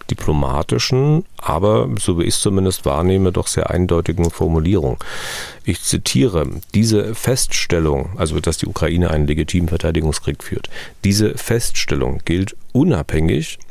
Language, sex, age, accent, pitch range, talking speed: German, male, 40-59, German, 85-110 Hz, 125 wpm